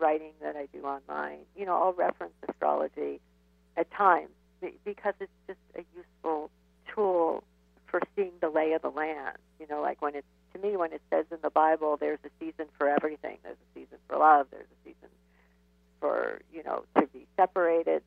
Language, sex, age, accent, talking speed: English, female, 50-69, American, 190 wpm